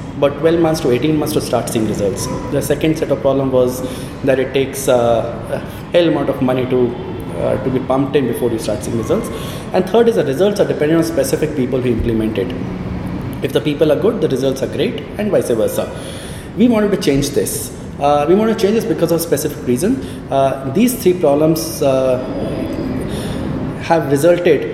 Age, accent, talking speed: 20-39, Indian, 200 wpm